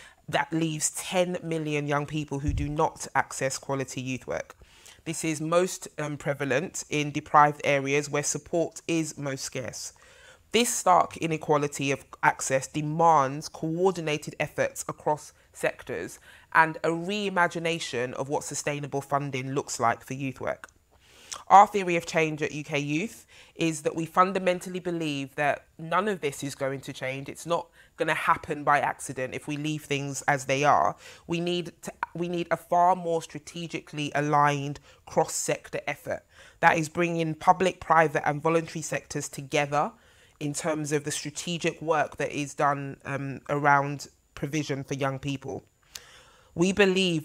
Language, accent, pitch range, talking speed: English, British, 140-165 Hz, 150 wpm